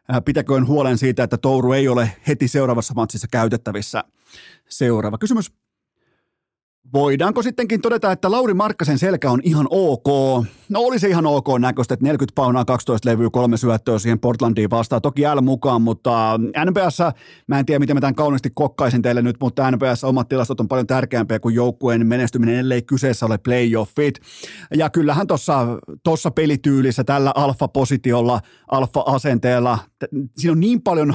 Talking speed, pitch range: 150 wpm, 120-150 Hz